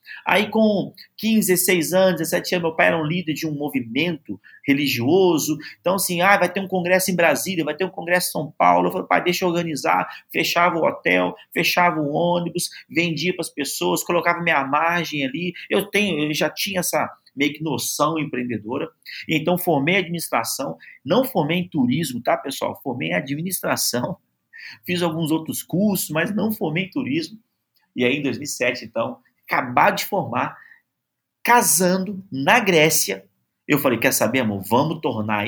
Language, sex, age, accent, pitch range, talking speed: Portuguese, male, 40-59, Brazilian, 155-205 Hz, 170 wpm